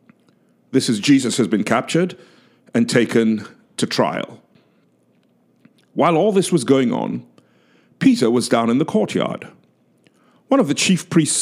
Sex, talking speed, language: male, 140 wpm, English